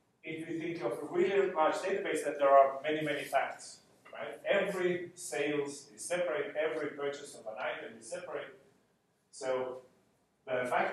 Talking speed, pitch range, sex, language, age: 160 wpm, 135-165 Hz, male, English, 40-59